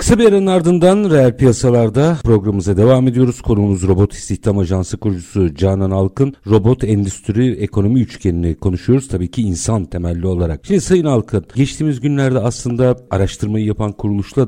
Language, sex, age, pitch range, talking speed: Turkish, male, 50-69, 105-150 Hz, 140 wpm